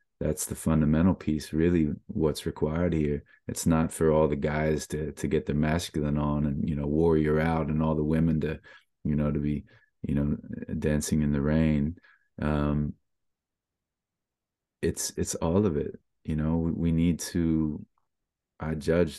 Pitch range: 75-80 Hz